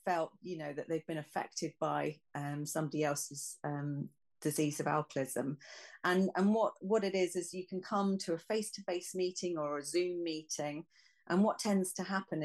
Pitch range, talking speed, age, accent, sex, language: 155-185 Hz, 185 wpm, 40-59, British, female, English